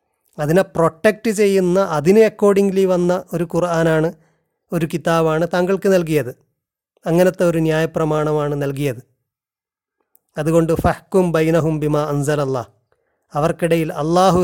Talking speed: 95 wpm